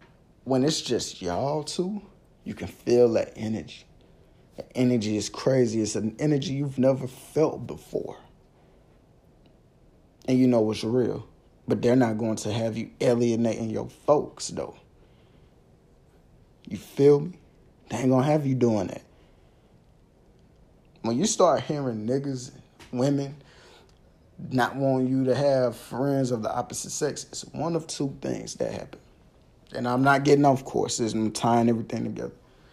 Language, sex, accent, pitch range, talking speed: English, male, American, 115-135 Hz, 150 wpm